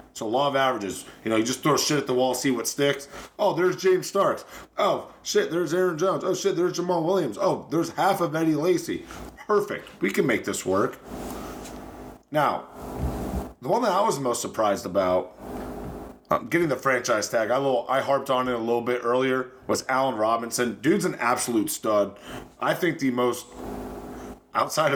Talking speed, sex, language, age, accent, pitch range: 190 wpm, male, English, 30-49, American, 110-150 Hz